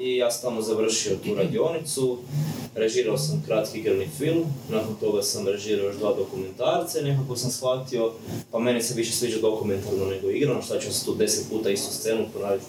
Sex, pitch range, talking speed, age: male, 120-150 Hz, 180 wpm, 20-39